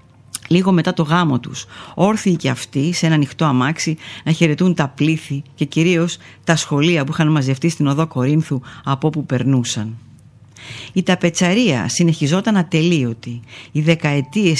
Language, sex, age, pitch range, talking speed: Greek, female, 50-69, 125-170 Hz, 145 wpm